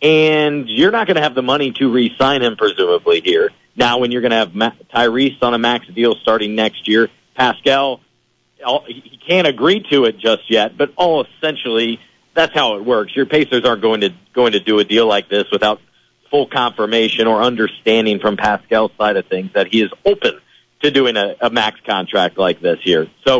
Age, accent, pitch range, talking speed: 40-59, American, 115-145 Hz, 200 wpm